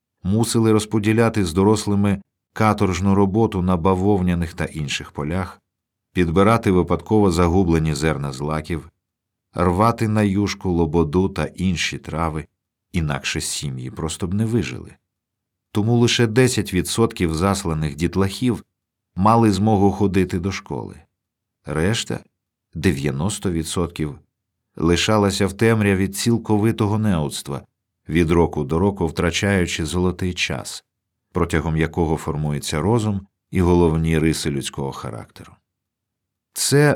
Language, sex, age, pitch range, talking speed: Ukrainian, male, 50-69, 85-110 Hz, 105 wpm